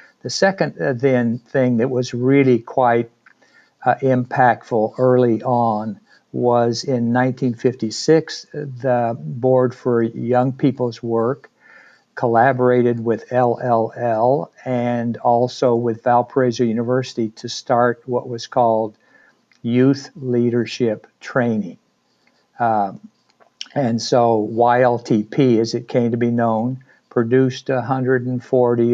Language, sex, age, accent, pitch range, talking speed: English, male, 60-79, American, 115-130 Hz, 105 wpm